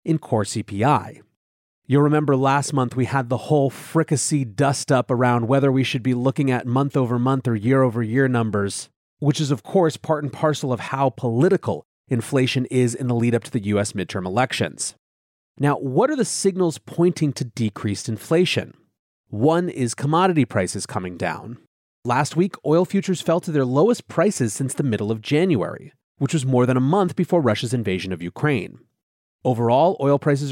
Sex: male